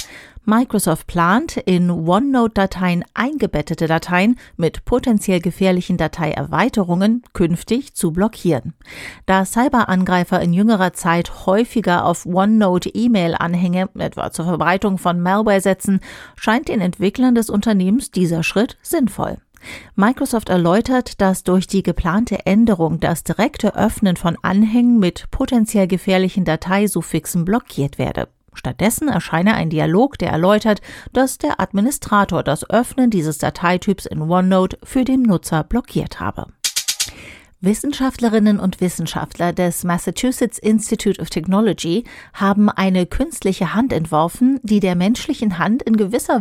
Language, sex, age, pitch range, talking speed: German, female, 40-59, 175-230 Hz, 120 wpm